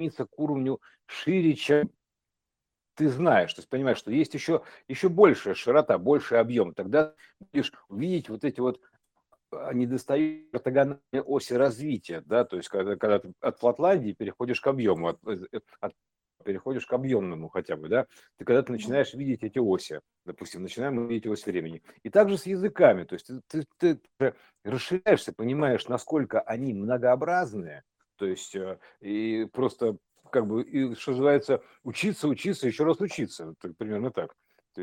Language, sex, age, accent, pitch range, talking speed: Russian, male, 60-79, native, 120-160 Hz, 155 wpm